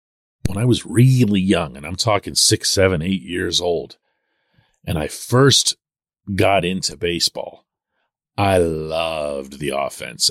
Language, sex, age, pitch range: English, male, 40-59, 105-150 Hz